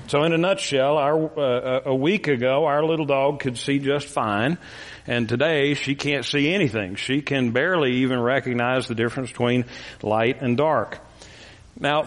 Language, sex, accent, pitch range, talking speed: English, male, American, 125-155 Hz, 165 wpm